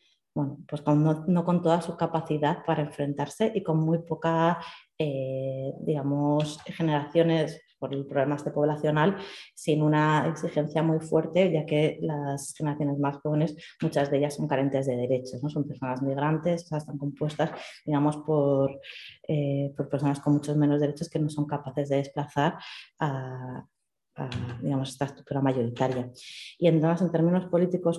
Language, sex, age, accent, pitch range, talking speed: Spanish, female, 20-39, Spanish, 145-170 Hz, 150 wpm